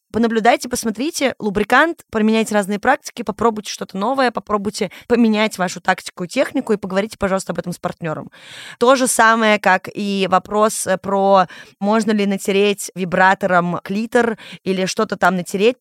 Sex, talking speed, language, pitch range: female, 145 wpm, Russian, 180-225 Hz